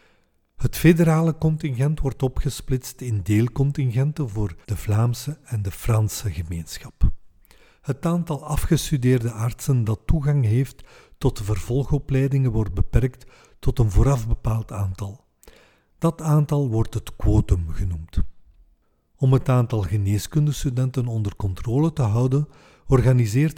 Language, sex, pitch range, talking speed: Dutch, male, 105-135 Hz, 115 wpm